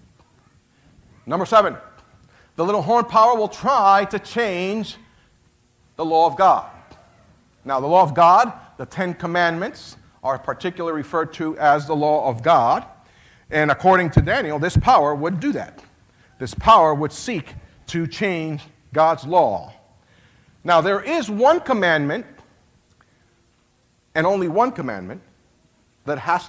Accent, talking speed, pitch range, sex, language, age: American, 135 wpm, 140-180 Hz, male, English, 50-69